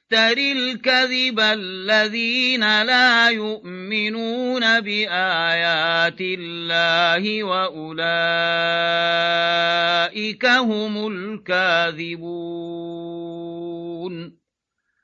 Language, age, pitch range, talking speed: Arabic, 40-59, 170-230 Hz, 40 wpm